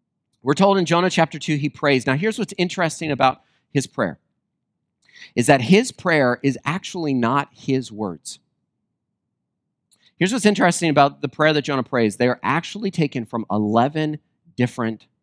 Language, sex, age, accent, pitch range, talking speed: English, male, 40-59, American, 135-185 Hz, 160 wpm